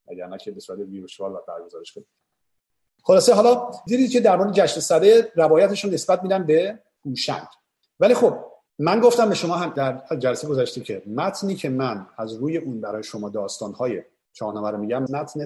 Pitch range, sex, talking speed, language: 115-175 Hz, male, 185 wpm, Persian